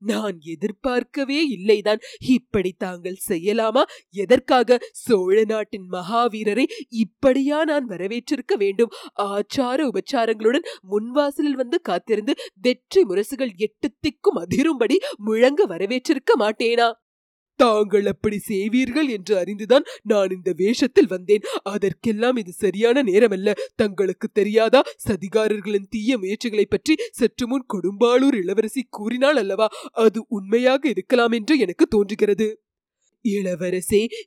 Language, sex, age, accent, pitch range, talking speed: Tamil, female, 30-49, native, 205-260 Hz, 100 wpm